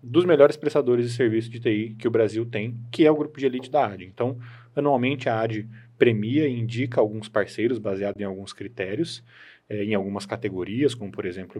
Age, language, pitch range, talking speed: 20-39, Portuguese, 105-130 Hz, 200 wpm